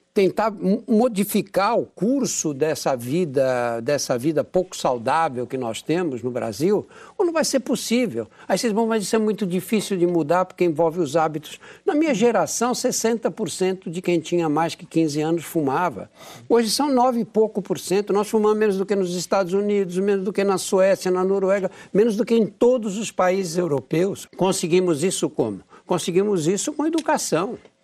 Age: 60-79